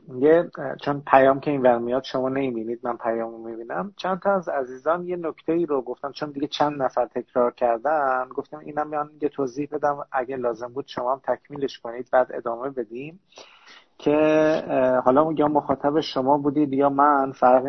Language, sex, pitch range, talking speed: Persian, male, 130-160 Hz, 165 wpm